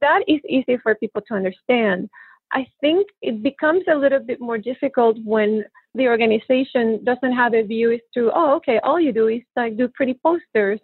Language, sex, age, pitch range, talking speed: English, female, 30-49, 215-270 Hz, 195 wpm